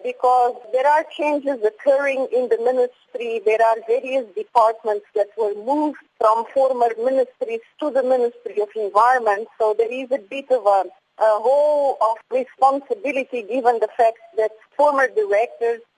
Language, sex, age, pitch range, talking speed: English, female, 30-49, 215-280 Hz, 150 wpm